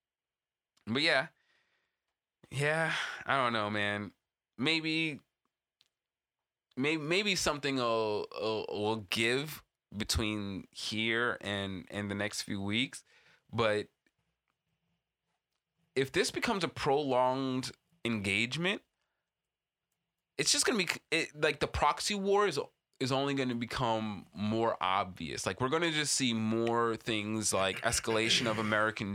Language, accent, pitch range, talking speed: English, American, 110-140 Hz, 120 wpm